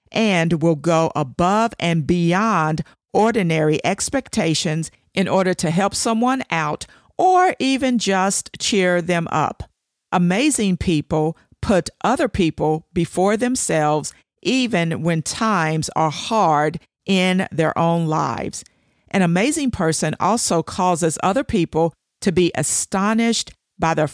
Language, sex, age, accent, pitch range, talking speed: English, female, 50-69, American, 160-205 Hz, 120 wpm